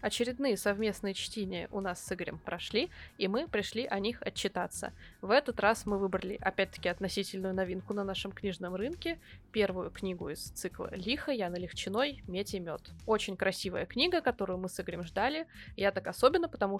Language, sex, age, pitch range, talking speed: Russian, female, 20-39, 190-220 Hz, 170 wpm